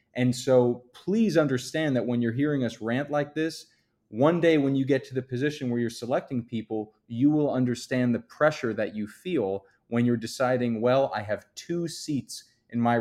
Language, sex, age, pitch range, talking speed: English, male, 20-39, 115-135 Hz, 195 wpm